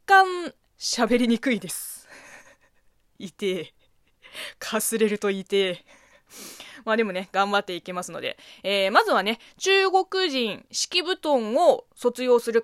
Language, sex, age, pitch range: Japanese, female, 20-39, 200-315 Hz